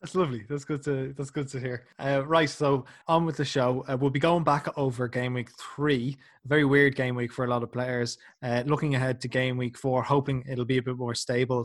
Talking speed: 255 wpm